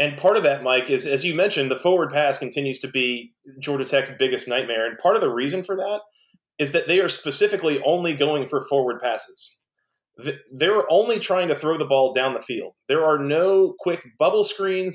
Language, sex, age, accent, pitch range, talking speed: English, male, 30-49, American, 140-190 Hz, 210 wpm